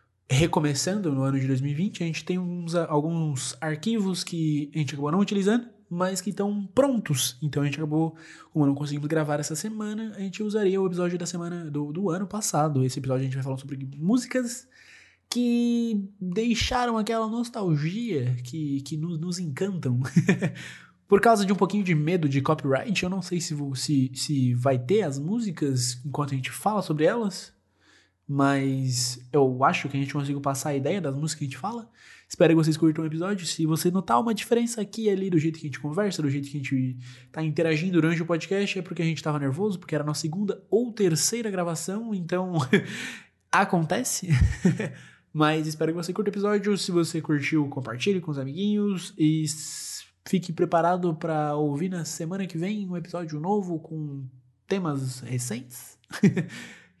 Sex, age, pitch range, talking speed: male, 20-39, 145-195 Hz, 185 wpm